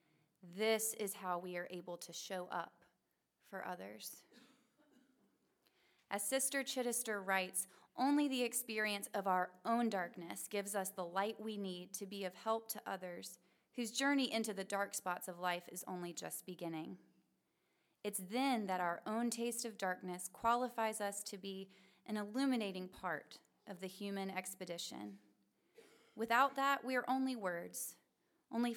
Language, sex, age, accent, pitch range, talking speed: English, female, 30-49, American, 185-230 Hz, 150 wpm